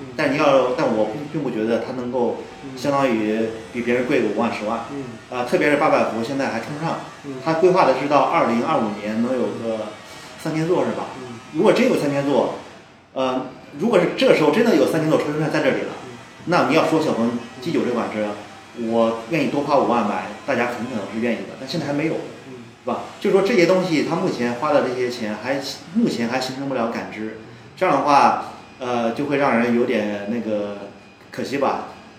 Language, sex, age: Chinese, male, 30-49